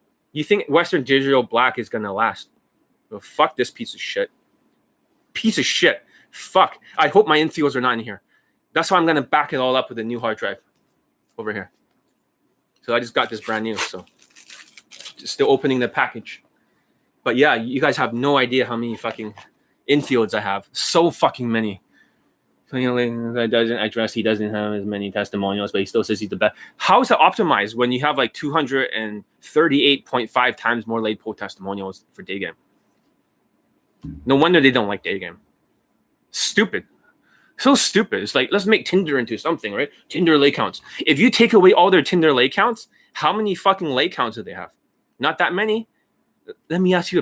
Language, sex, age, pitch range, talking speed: English, male, 20-39, 110-155 Hz, 190 wpm